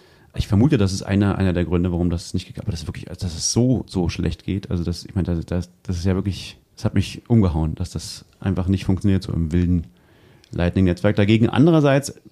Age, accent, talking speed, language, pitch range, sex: 30-49, German, 235 wpm, German, 95-120 Hz, male